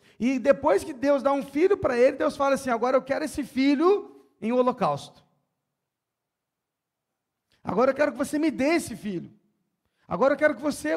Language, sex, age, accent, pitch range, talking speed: Portuguese, male, 40-59, Brazilian, 175-280 Hz, 180 wpm